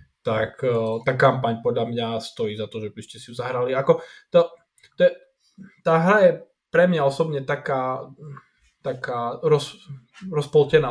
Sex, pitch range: male, 125-155 Hz